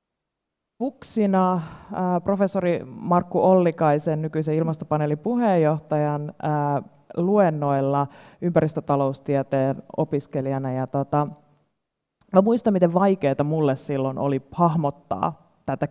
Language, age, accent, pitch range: Finnish, 30-49, native, 135-155 Hz